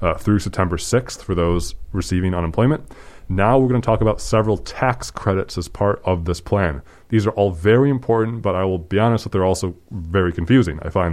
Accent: American